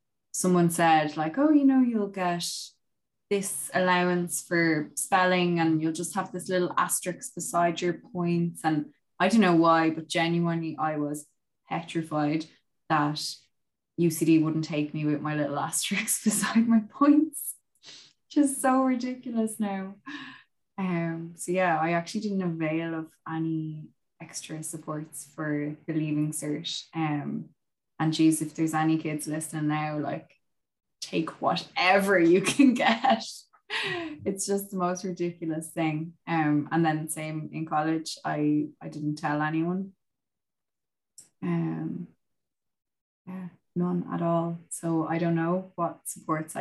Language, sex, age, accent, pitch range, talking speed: English, female, 20-39, Irish, 155-185 Hz, 135 wpm